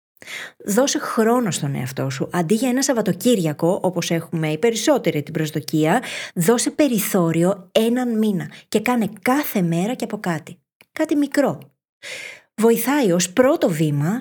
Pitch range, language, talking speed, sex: 170-240 Hz, Greek, 135 wpm, female